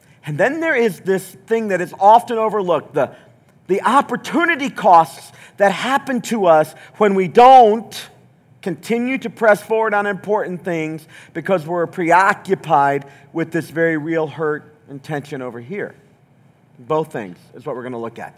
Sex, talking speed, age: male, 160 wpm, 40-59